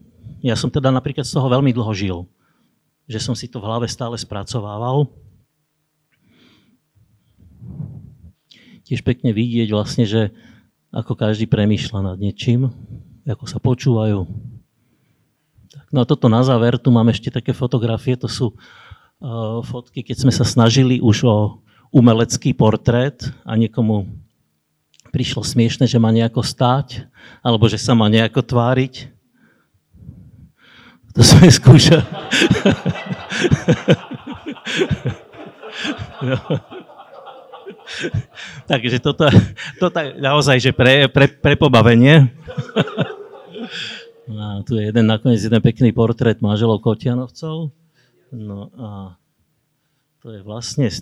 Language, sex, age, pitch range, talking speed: Slovak, male, 50-69, 110-135 Hz, 110 wpm